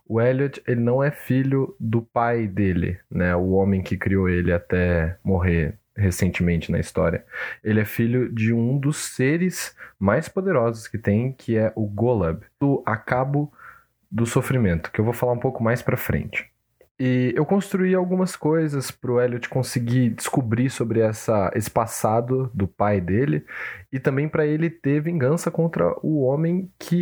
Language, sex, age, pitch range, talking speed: Portuguese, male, 20-39, 100-140 Hz, 165 wpm